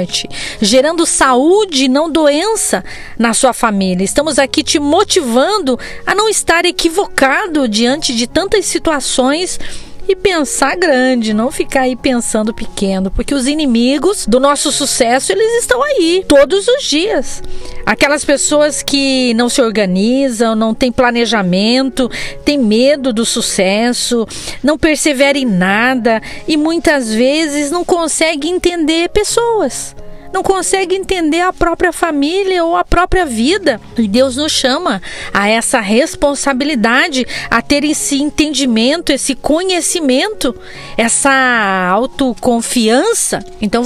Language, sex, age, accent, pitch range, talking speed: Portuguese, female, 40-59, Brazilian, 235-335 Hz, 120 wpm